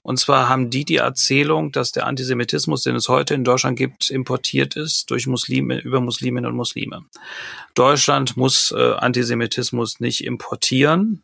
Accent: German